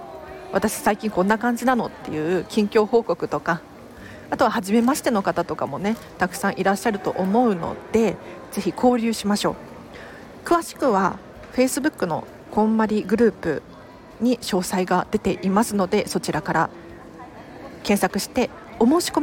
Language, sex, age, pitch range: Japanese, female, 40-59, 185-255 Hz